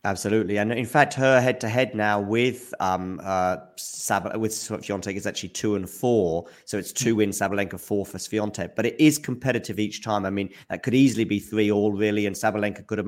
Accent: British